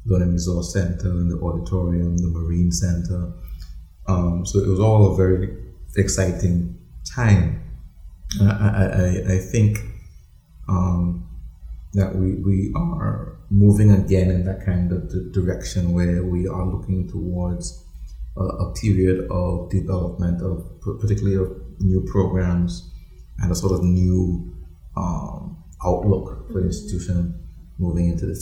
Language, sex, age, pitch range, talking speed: English, male, 30-49, 85-95 Hz, 130 wpm